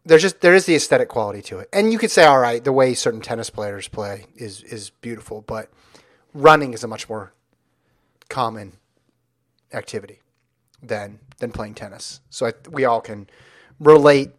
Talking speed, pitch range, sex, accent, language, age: 175 wpm, 115-150 Hz, male, American, English, 30-49